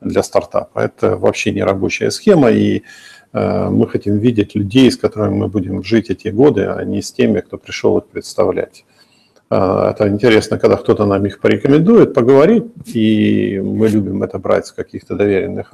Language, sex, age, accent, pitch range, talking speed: Russian, male, 50-69, native, 100-120 Hz, 165 wpm